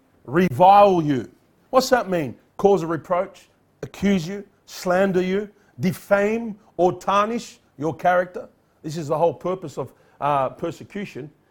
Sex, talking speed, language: male, 130 wpm, English